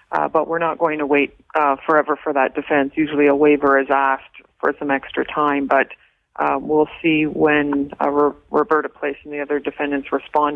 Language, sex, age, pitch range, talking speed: English, female, 40-59, 145-165 Hz, 200 wpm